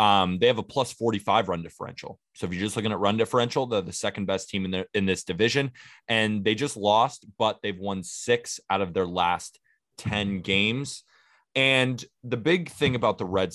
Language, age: English, 20-39